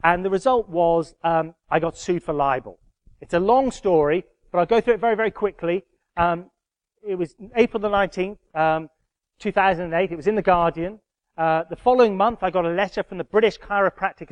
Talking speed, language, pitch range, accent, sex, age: 210 wpm, English, 170-215 Hz, British, male, 30-49